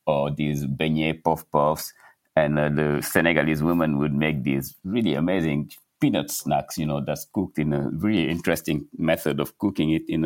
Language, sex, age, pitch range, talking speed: English, male, 60-79, 70-80 Hz, 175 wpm